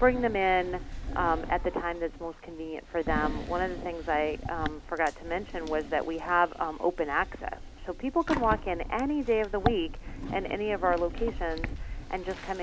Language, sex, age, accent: English, female, 30-49, American